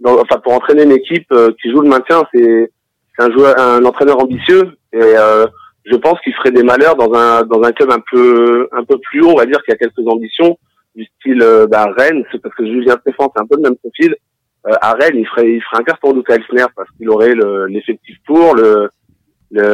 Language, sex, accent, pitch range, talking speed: French, male, French, 110-145 Hz, 230 wpm